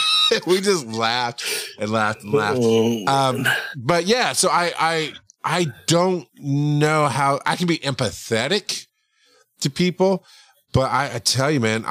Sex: male